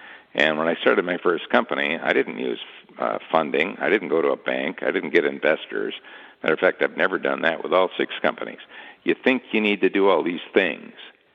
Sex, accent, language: male, American, English